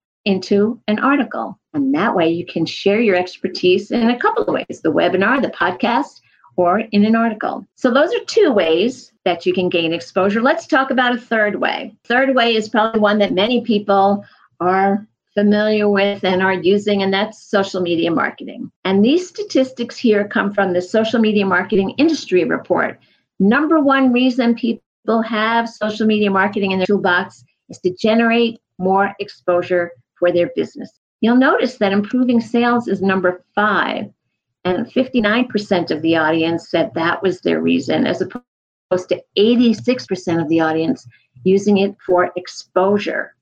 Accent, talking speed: American, 165 wpm